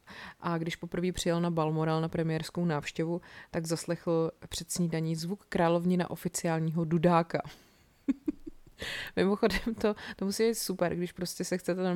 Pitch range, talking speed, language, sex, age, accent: 170-190 Hz, 140 wpm, Czech, female, 20-39, native